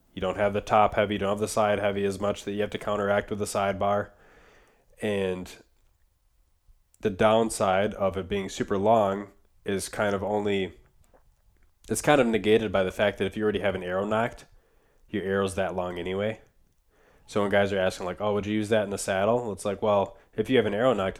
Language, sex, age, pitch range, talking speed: English, male, 20-39, 95-105 Hz, 220 wpm